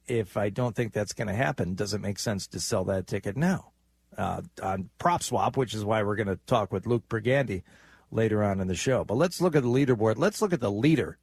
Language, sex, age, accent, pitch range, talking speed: English, male, 50-69, American, 105-150 Hz, 250 wpm